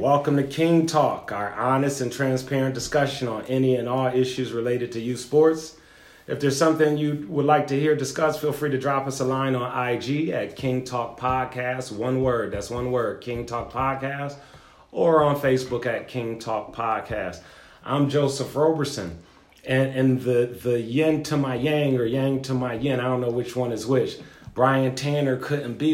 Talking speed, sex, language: 190 wpm, male, English